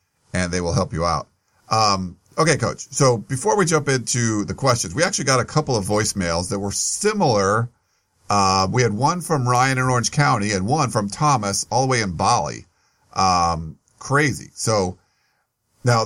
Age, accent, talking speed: 50-69, American, 180 wpm